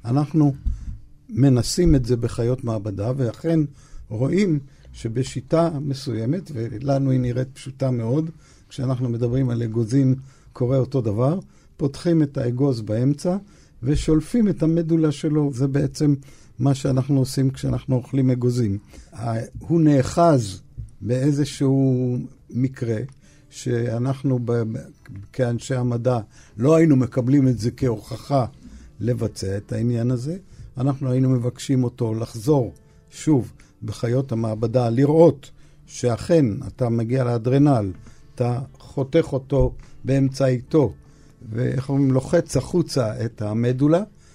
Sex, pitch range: male, 120-145 Hz